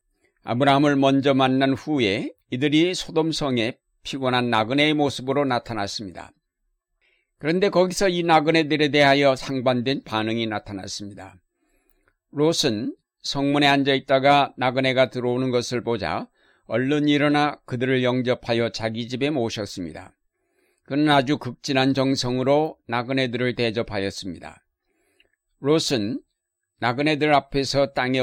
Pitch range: 120-150 Hz